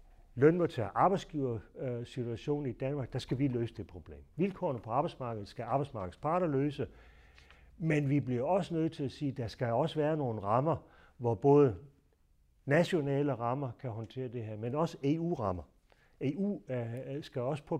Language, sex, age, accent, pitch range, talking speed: Danish, male, 60-79, native, 110-145 Hz, 160 wpm